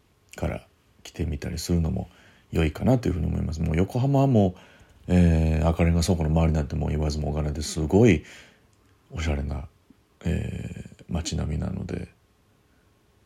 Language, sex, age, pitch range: Japanese, male, 40-59, 80-100 Hz